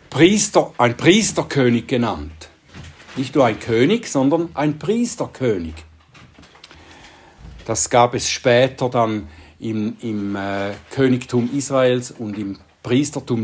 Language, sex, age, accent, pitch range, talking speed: German, male, 60-79, German, 115-155 Hz, 105 wpm